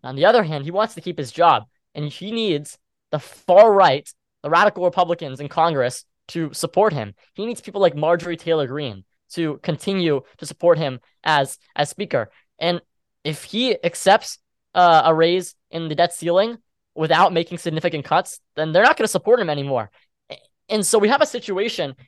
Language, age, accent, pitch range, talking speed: English, 10-29, American, 150-185 Hz, 185 wpm